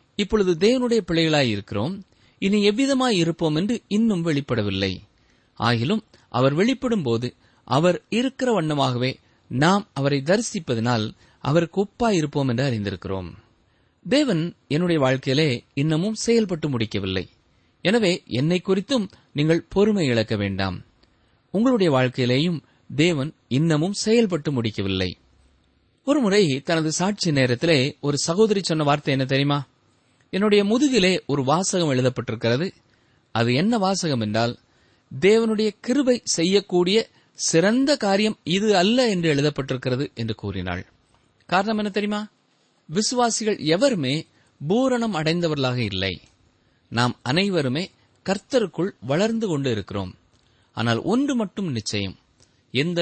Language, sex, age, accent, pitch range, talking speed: Tamil, male, 30-49, native, 120-200 Hz, 100 wpm